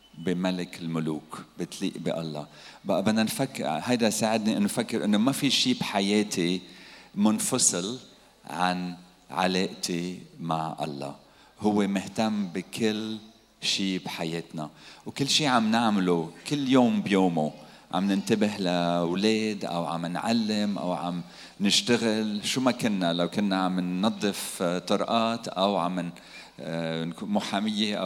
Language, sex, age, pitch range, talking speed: Arabic, male, 40-59, 85-110 Hz, 115 wpm